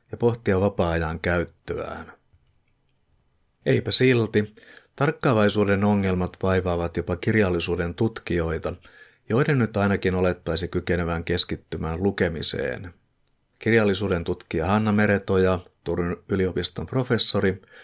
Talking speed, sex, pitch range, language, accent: 85 wpm, male, 85-105 Hz, Finnish, native